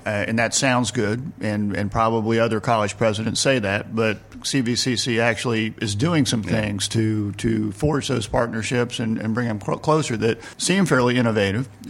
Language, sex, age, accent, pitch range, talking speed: English, male, 50-69, American, 110-125 Hz, 170 wpm